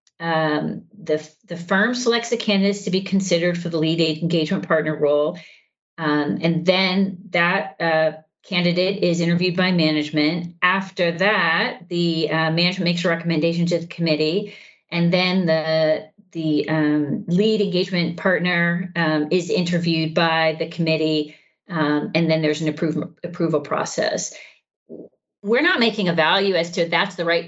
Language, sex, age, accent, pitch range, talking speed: English, female, 40-59, American, 160-190 Hz, 150 wpm